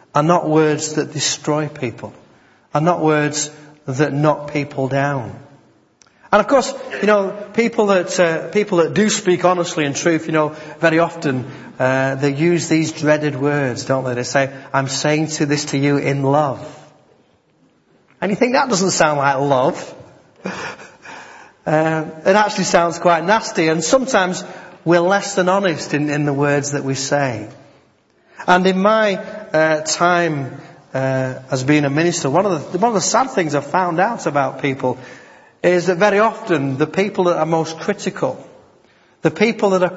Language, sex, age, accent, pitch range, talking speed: English, male, 40-59, British, 140-180 Hz, 170 wpm